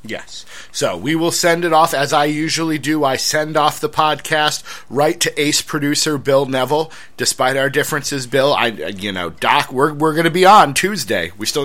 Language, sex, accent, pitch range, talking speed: English, male, American, 130-165 Hz, 200 wpm